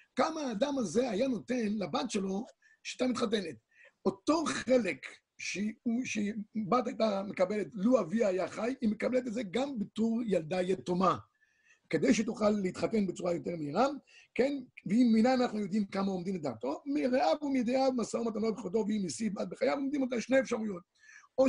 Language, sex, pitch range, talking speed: Hebrew, male, 195-255 Hz, 155 wpm